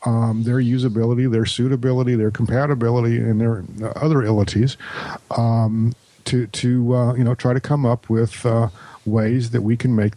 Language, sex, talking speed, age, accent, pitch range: English, male, 165 wpm, 50-69, American, 115-130 Hz